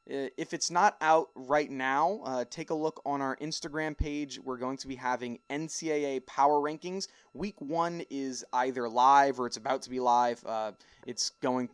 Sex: male